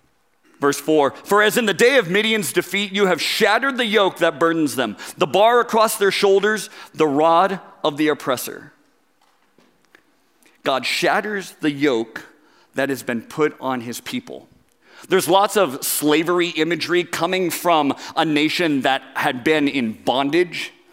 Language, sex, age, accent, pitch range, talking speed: English, male, 40-59, American, 155-225 Hz, 150 wpm